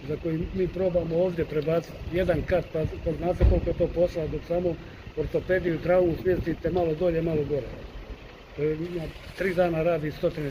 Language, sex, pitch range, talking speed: Croatian, male, 150-175 Hz, 170 wpm